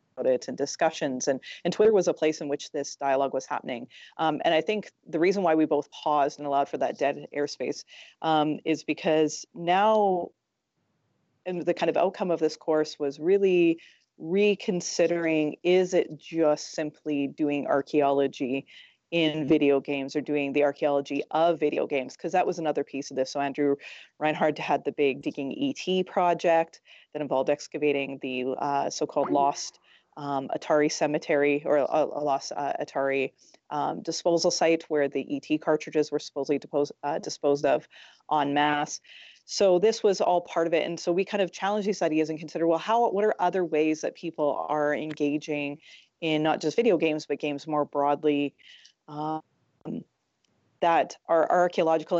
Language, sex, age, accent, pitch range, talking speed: English, female, 30-49, American, 145-170 Hz, 170 wpm